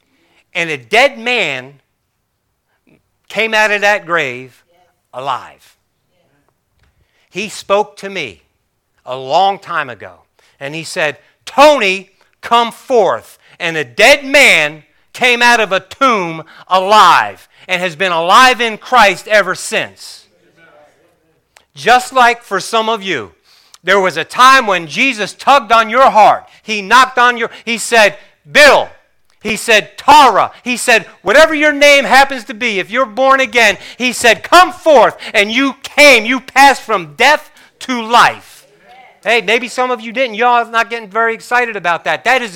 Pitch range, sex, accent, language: 195-255 Hz, male, American, English